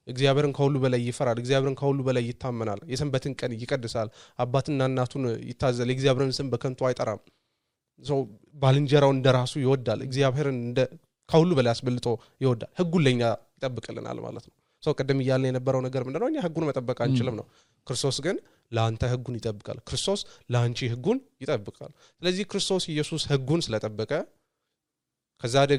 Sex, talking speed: male, 155 wpm